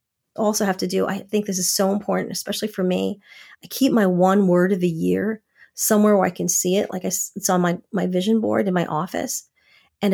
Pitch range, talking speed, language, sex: 180-215 Hz, 230 wpm, English, female